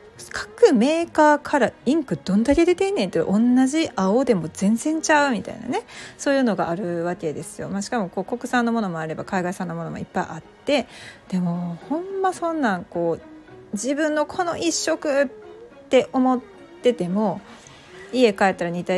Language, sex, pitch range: Japanese, female, 180-290 Hz